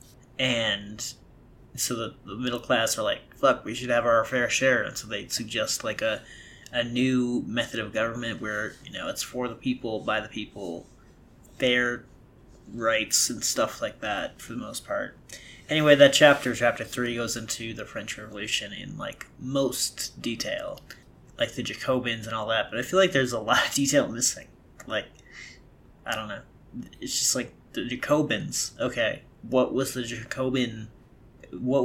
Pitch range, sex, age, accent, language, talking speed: 115-130 Hz, male, 30-49, American, English, 170 wpm